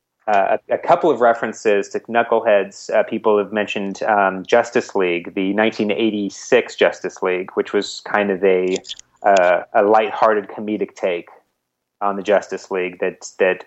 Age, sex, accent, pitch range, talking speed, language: 30-49, male, American, 95-110 Hz, 150 wpm, English